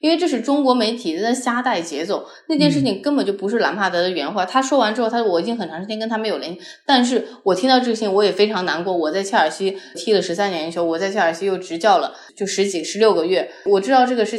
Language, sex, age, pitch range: Chinese, female, 20-39, 195-260 Hz